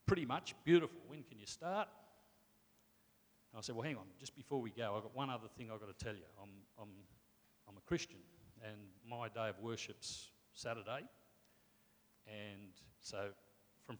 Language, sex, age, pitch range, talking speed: English, male, 50-69, 105-125 Hz, 170 wpm